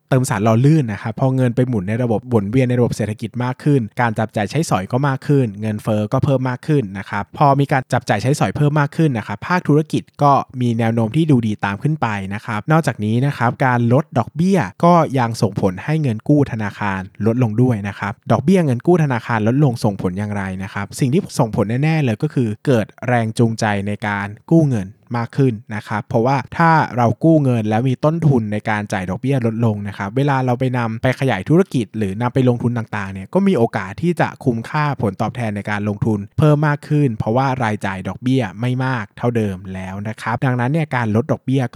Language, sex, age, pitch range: Thai, male, 20-39, 105-140 Hz